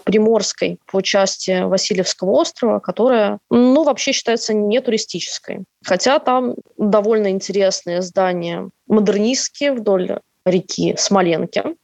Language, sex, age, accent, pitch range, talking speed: Russian, female, 20-39, native, 185-220 Hz, 95 wpm